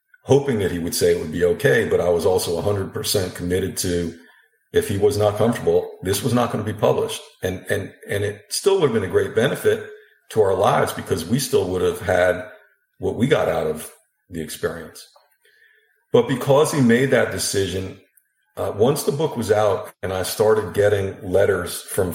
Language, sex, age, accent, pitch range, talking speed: English, male, 50-69, American, 90-145 Hz, 205 wpm